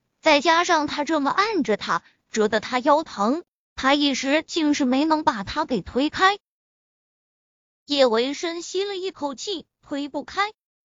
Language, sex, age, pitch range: Chinese, female, 20-39, 235-350 Hz